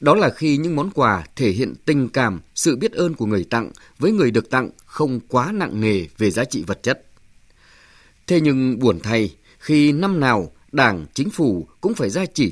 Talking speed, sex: 205 wpm, male